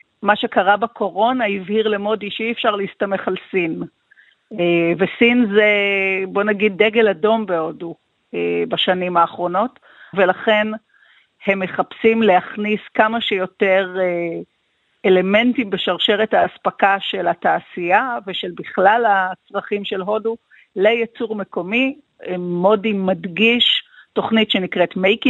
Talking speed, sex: 100 wpm, female